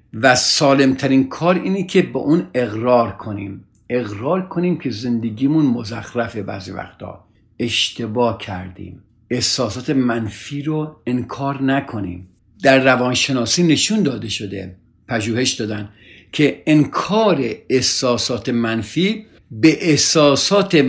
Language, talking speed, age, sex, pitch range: Persian, 105 wpm, 60-79, male, 120-175 Hz